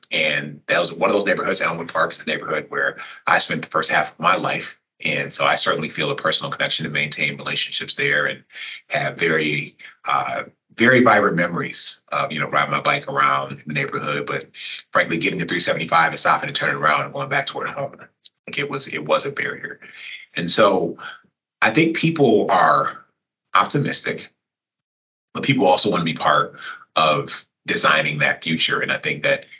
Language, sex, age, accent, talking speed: English, male, 30-49, American, 195 wpm